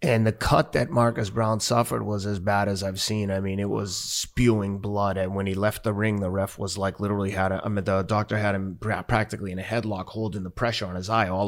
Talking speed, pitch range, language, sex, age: 255 wpm, 100-115 Hz, English, male, 30-49